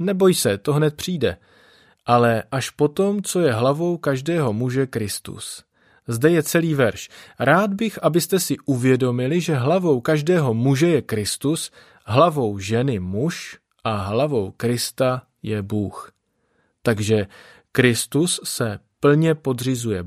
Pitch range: 120-155 Hz